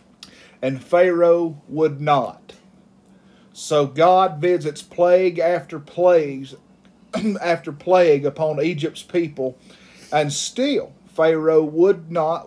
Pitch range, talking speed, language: 155-190 Hz, 95 wpm, English